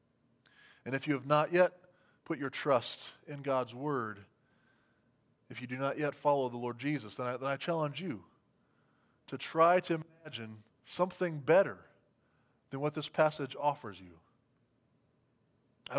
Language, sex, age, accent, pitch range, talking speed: English, male, 20-39, American, 125-155 Hz, 150 wpm